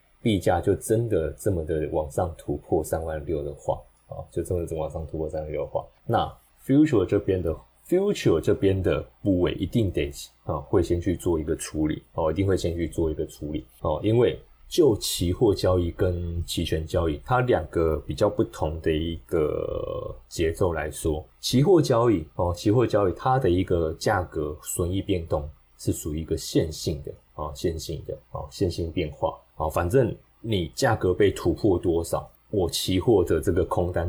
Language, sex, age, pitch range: Chinese, male, 20-39, 80-100 Hz